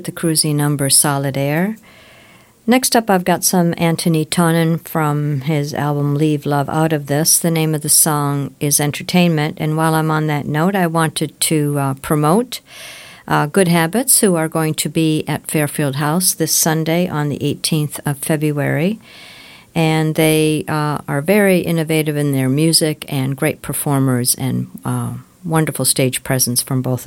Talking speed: 165 wpm